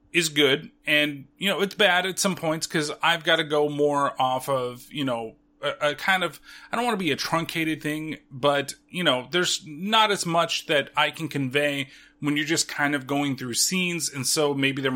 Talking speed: 220 wpm